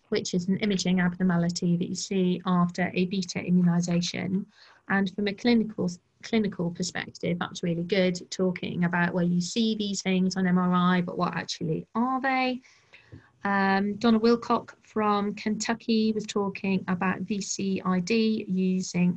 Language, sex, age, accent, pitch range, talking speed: English, female, 30-49, British, 185-215 Hz, 140 wpm